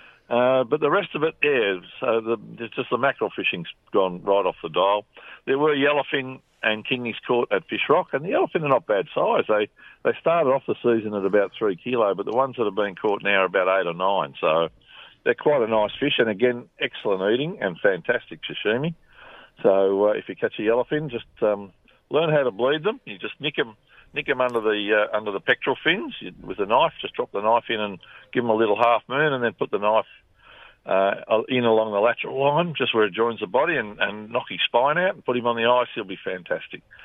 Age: 50-69